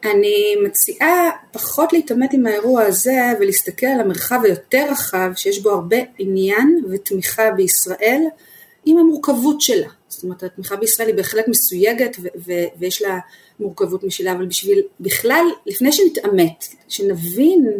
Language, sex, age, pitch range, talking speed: Hebrew, female, 30-49, 195-295 Hz, 135 wpm